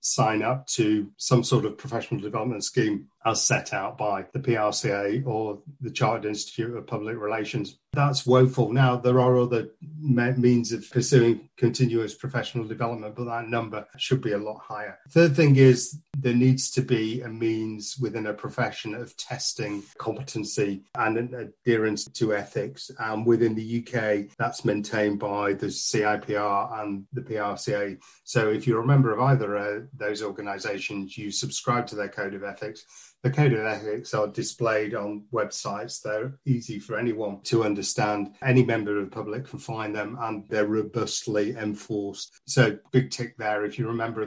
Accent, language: British, English